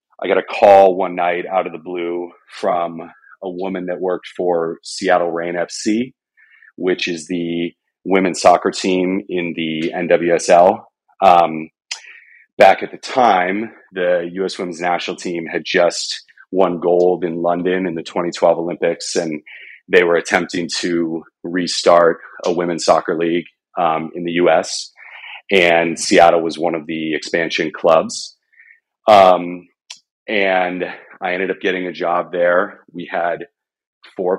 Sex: male